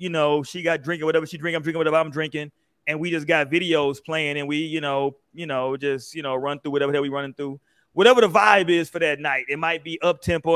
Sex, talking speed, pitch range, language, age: male, 255 wpm, 150-190 Hz, English, 30-49